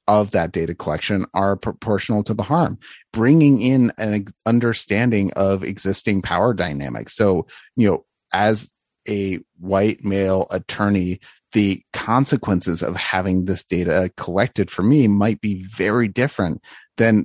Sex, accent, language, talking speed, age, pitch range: male, American, English, 135 wpm, 30-49, 95-110 Hz